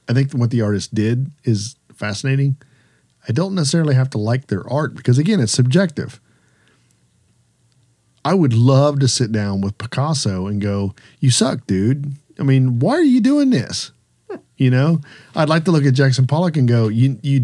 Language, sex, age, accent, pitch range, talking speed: English, male, 50-69, American, 110-135 Hz, 180 wpm